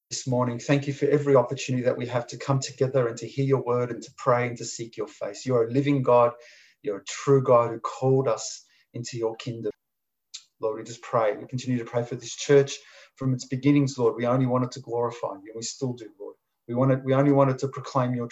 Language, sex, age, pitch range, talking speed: English, male, 30-49, 120-140 Hz, 240 wpm